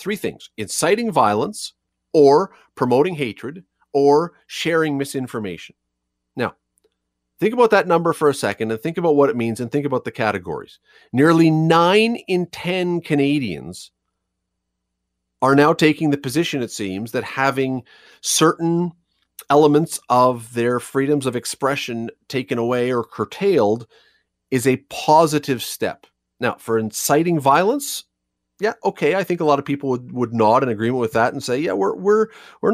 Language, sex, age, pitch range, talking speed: English, male, 40-59, 115-160 Hz, 150 wpm